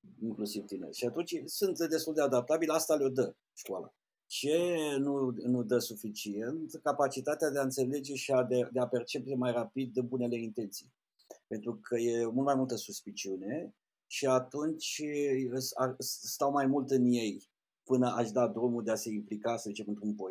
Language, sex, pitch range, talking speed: Romanian, male, 120-145 Hz, 170 wpm